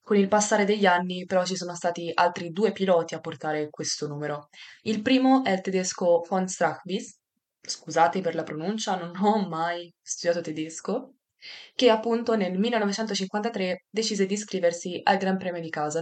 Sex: female